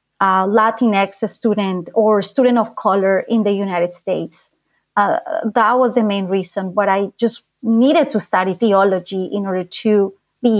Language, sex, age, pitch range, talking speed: English, female, 30-49, 195-230 Hz, 160 wpm